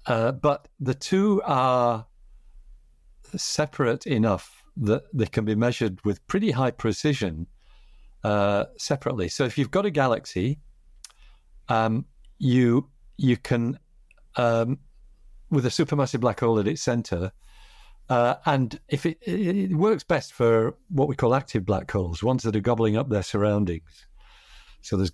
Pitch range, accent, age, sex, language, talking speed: 105-140 Hz, British, 50-69, male, English, 145 wpm